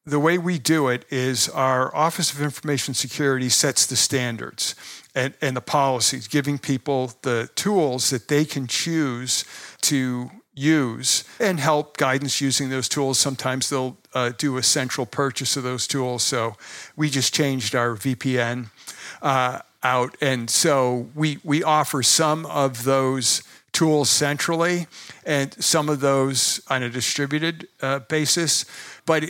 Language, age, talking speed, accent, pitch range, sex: English, 50-69, 145 wpm, American, 125-150 Hz, male